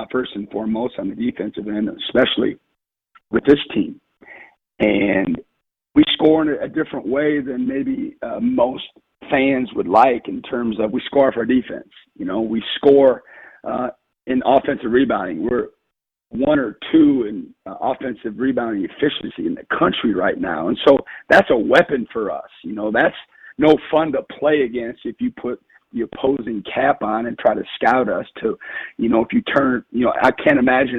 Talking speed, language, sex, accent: 180 wpm, English, male, American